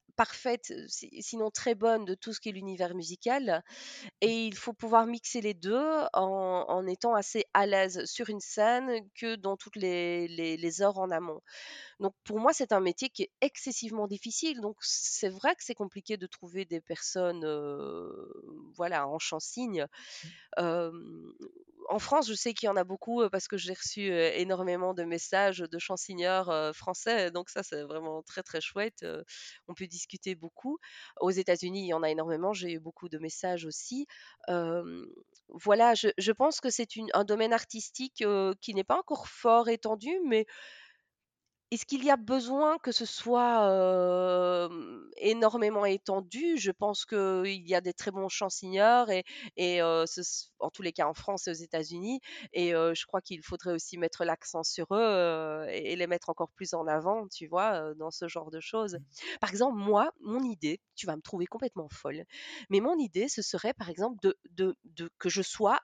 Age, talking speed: 30-49, 185 wpm